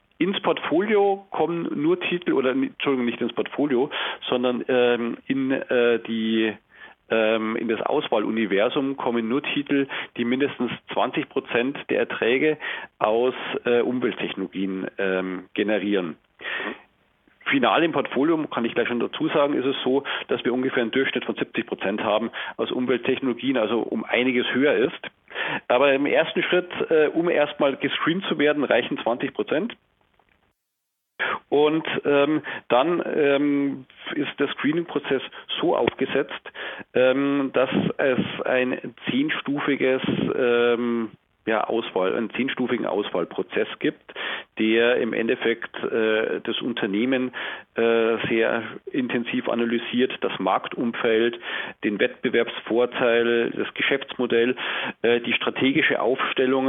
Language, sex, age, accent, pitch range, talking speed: German, male, 40-59, German, 120-150 Hz, 120 wpm